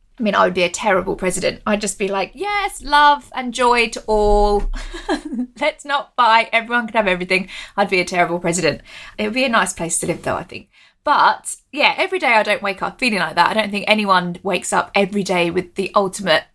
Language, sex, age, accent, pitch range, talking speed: English, female, 20-39, British, 195-260 Hz, 230 wpm